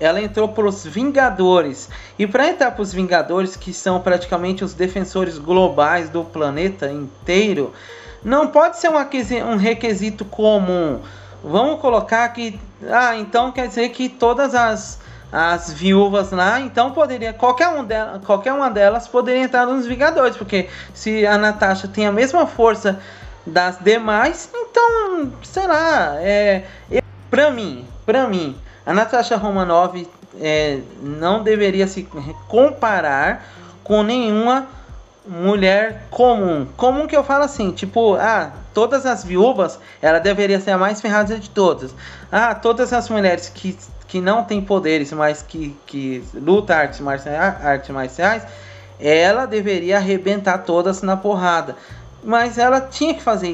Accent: Brazilian